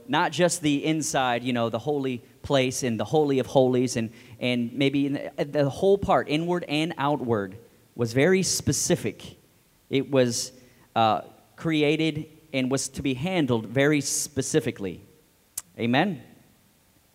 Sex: male